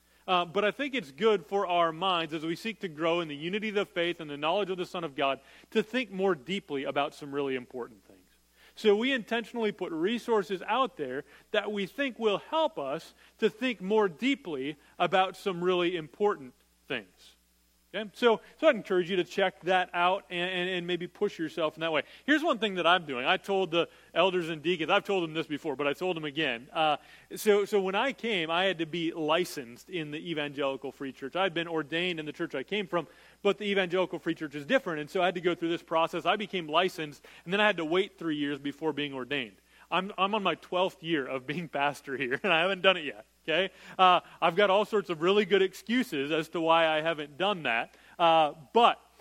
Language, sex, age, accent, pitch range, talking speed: English, male, 40-59, American, 160-205 Hz, 230 wpm